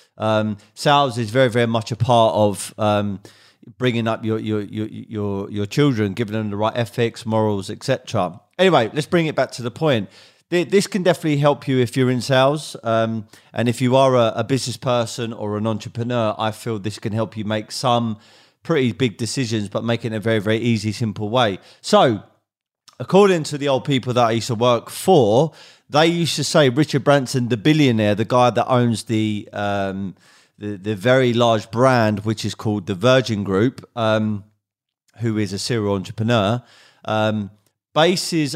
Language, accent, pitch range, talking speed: English, British, 105-130 Hz, 190 wpm